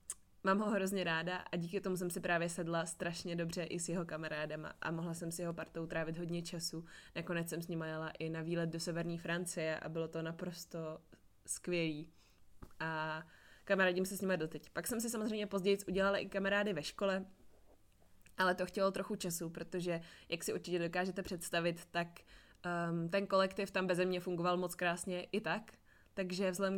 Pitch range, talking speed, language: 170-190 Hz, 180 wpm, Czech